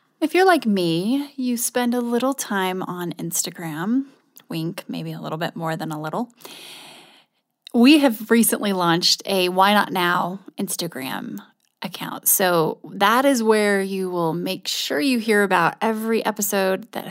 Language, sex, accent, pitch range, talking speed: English, female, American, 190-235 Hz, 155 wpm